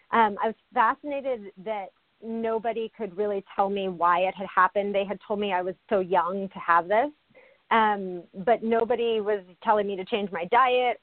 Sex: female